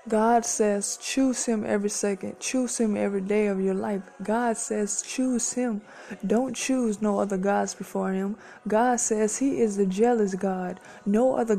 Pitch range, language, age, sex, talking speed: 200-235 Hz, English, 20-39, female, 170 wpm